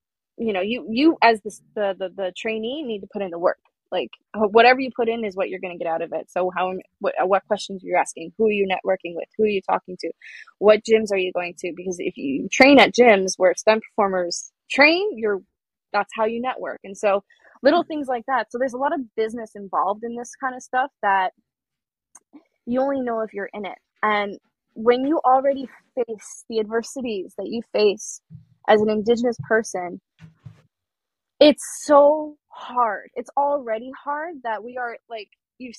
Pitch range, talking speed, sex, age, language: 195-255 Hz, 200 wpm, female, 20-39, English